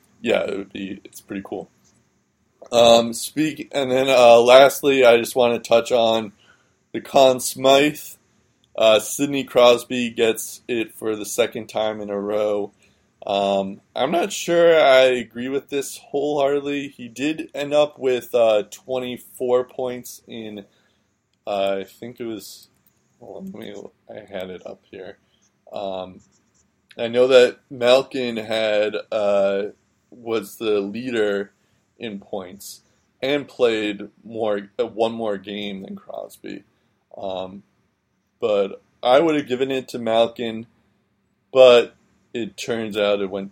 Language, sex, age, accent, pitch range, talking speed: English, male, 20-39, American, 105-130 Hz, 140 wpm